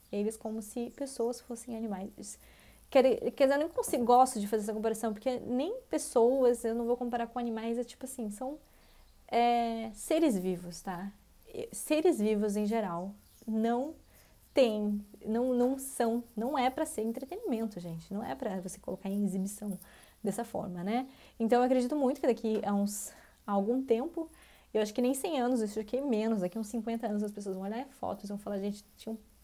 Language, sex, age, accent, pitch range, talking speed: English, female, 20-39, Brazilian, 195-240 Hz, 195 wpm